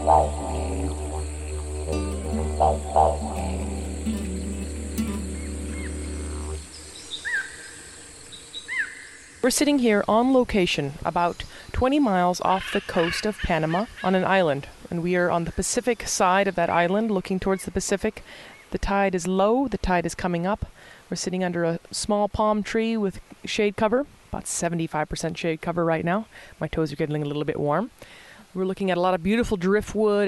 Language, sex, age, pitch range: English, female, 30-49, 160-205 Hz